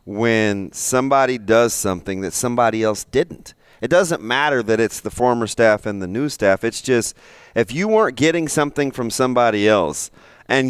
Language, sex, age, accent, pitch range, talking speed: English, male, 30-49, American, 110-145 Hz, 175 wpm